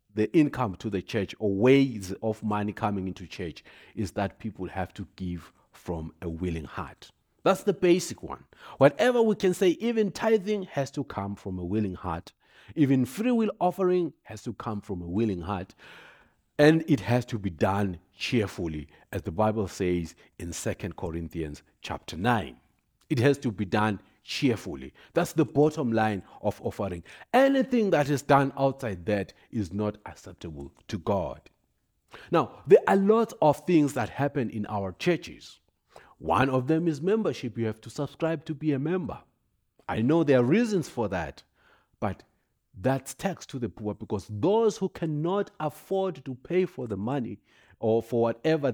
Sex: male